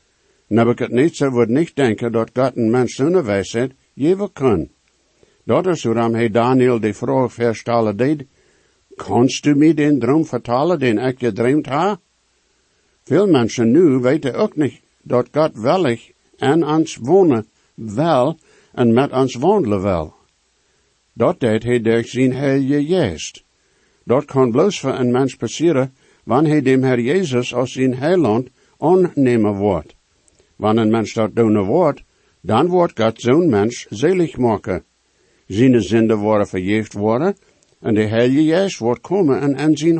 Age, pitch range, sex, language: 60-79, 115-145 Hz, male, English